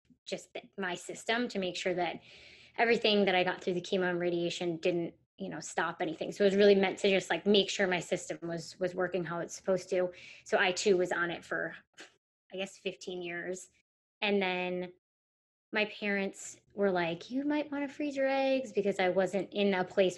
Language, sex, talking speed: English, female, 210 wpm